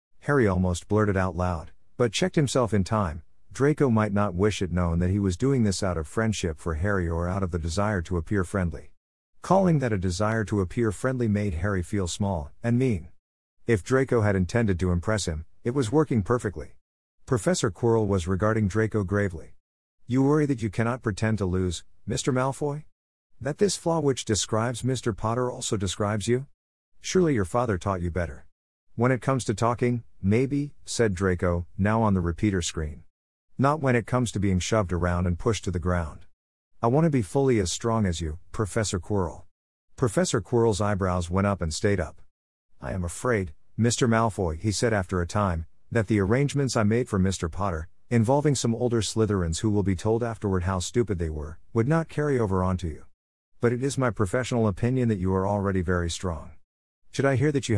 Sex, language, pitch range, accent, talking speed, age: male, English, 90-120 Hz, American, 195 wpm, 50-69